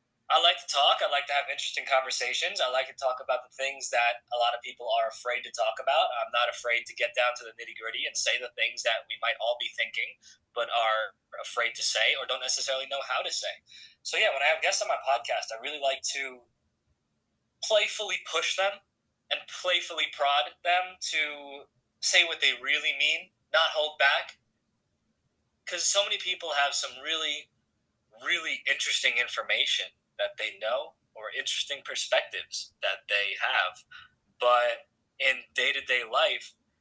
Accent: American